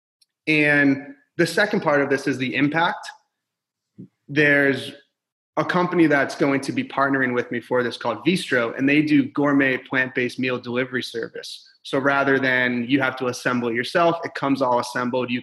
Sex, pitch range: male, 125-160 Hz